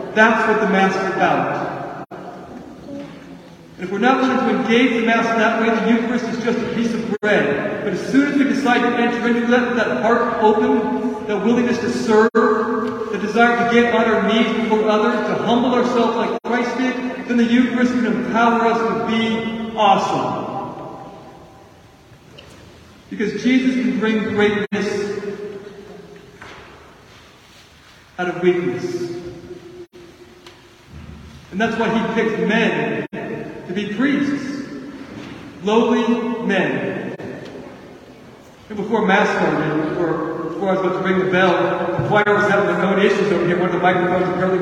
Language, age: English, 40-59